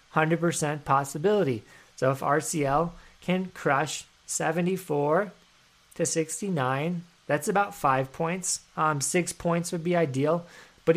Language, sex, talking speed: English, male, 120 wpm